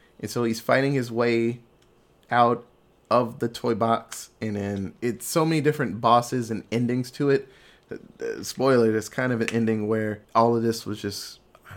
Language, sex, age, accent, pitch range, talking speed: English, male, 20-39, American, 110-160 Hz, 190 wpm